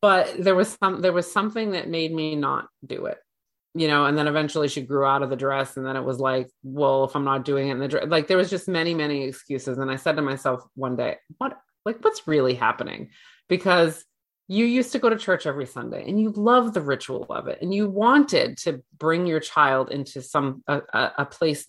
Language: English